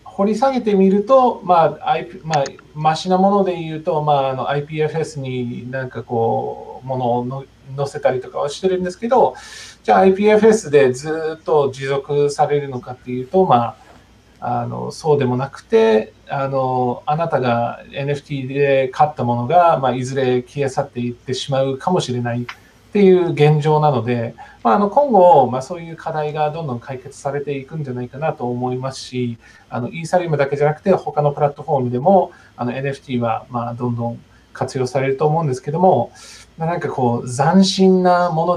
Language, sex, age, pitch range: Japanese, male, 40-59, 125-160 Hz